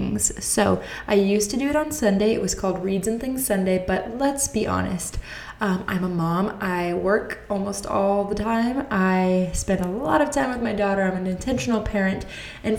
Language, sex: English, female